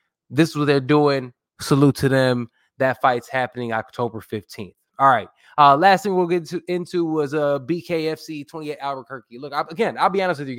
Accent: American